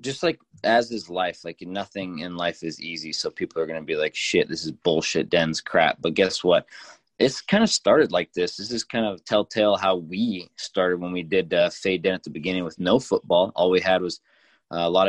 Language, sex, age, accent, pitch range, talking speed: English, male, 20-39, American, 90-110 Hz, 240 wpm